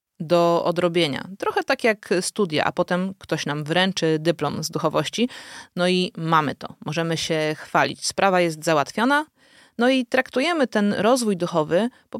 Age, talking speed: 30-49, 150 wpm